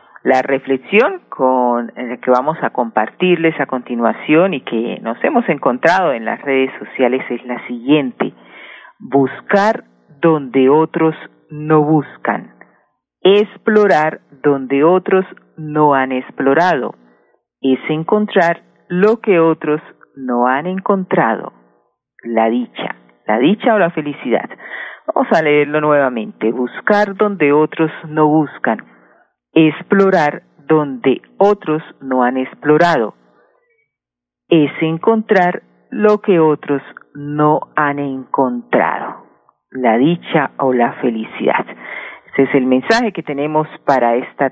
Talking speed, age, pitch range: 110 wpm, 40-59, 130-170 Hz